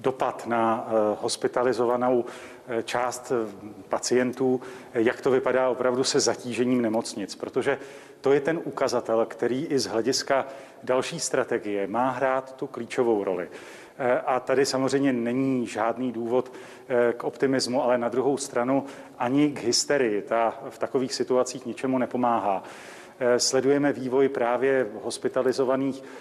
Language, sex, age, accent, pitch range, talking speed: Czech, male, 40-59, native, 120-135 Hz, 120 wpm